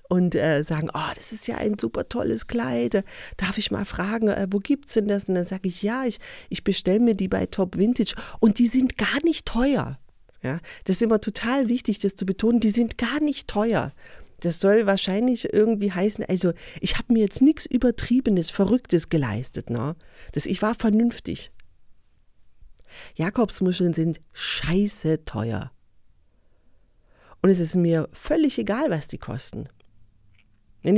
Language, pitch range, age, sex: German, 135-215 Hz, 30-49, female